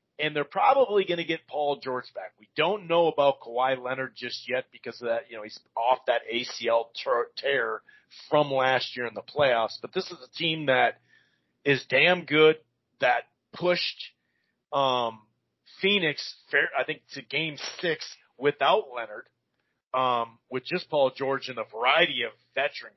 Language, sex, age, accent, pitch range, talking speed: English, male, 40-59, American, 130-170 Hz, 165 wpm